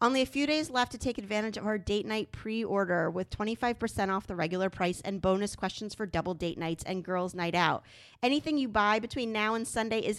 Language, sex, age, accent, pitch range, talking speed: English, female, 30-49, American, 190-230 Hz, 230 wpm